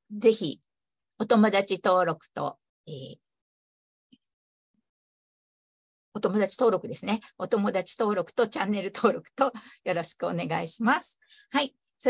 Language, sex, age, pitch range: Japanese, female, 50-69, 180-245 Hz